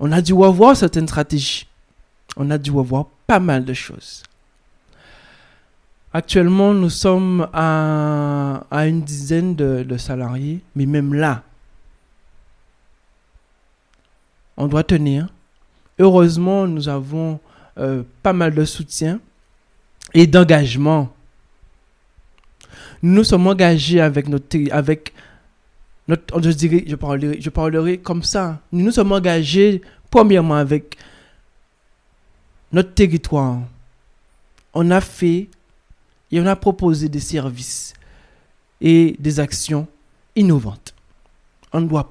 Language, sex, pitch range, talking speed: French, male, 135-175 Hz, 110 wpm